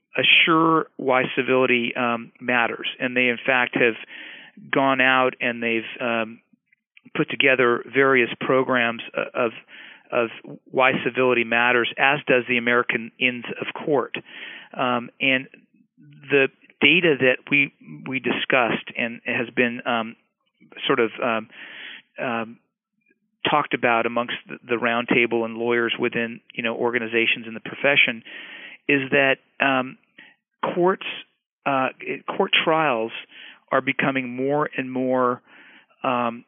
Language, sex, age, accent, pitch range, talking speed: English, male, 40-59, American, 120-135 Hz, 120 wpm